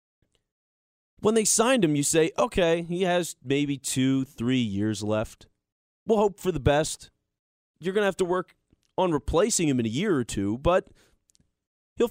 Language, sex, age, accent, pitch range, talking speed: English, male, 30-49, American, 145-215 Hz, 175 wpm